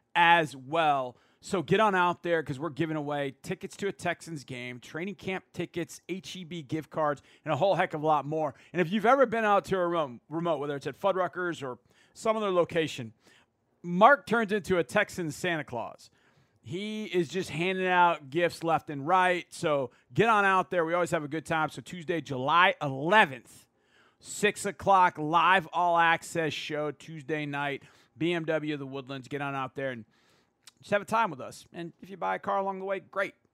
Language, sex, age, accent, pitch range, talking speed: English, male, 40-59, American, 140-185 Hz, 200 wpm